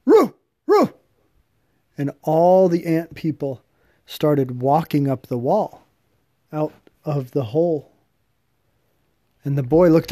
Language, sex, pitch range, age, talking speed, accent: English, male, 130-165 Hz, 40-59, 120 wpm, American